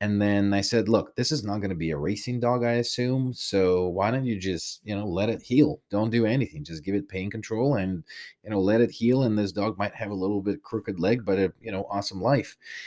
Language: English